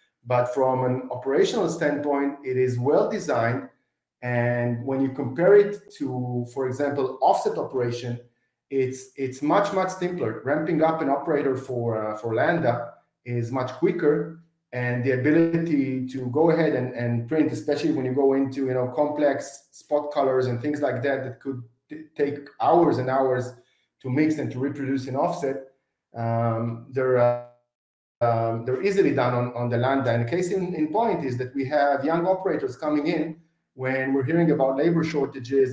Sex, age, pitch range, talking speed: male, 30-49, 125-155 Hz, 175 wpm